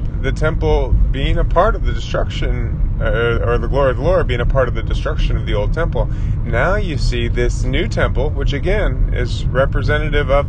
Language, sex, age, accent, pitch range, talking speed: English, male, 30-49, American, 100-125 Hz, 205 wpm